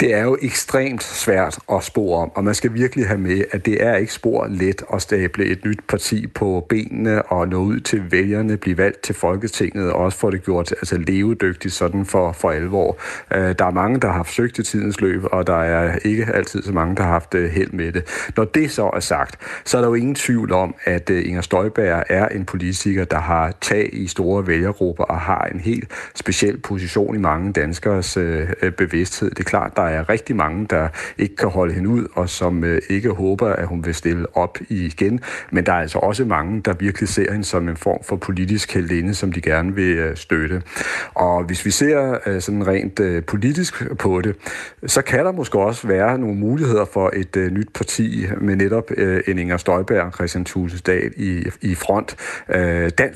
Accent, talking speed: native, 200 wpm